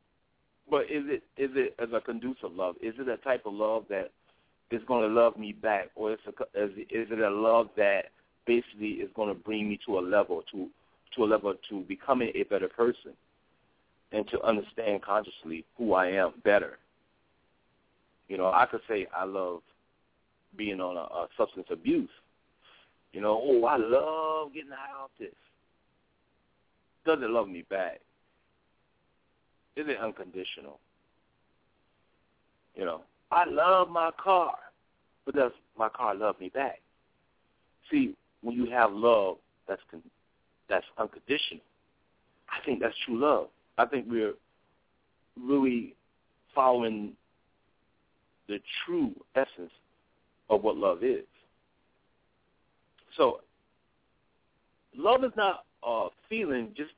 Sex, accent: male, American